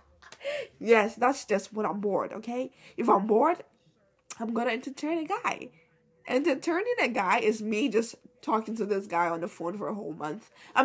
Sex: female